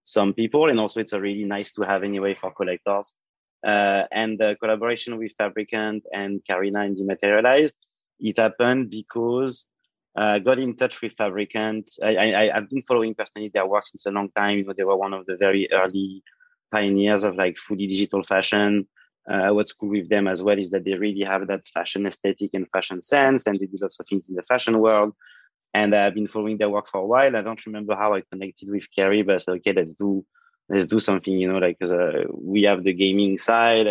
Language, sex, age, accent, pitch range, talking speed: English, male, 30-49, French, 100-110 Hz, 210 wpm